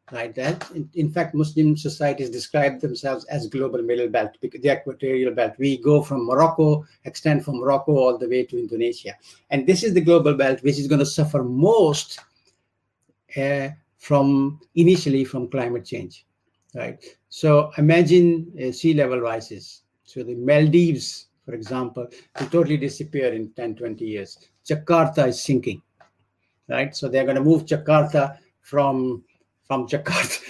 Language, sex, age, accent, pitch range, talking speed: Turkish, male, 60-79, Indian, 125-150 Hz, 155 wpm